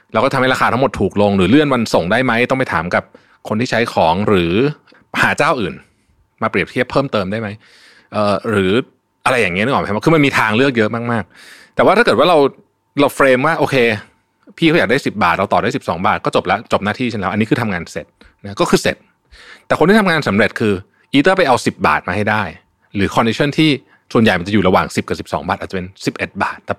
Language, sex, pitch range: Thai, male, 95-120 Hz